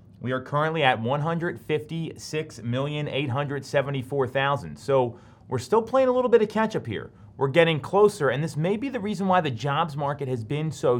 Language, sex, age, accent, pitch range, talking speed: English, male, 30-49, American, 115-150 Hz, 175 wpm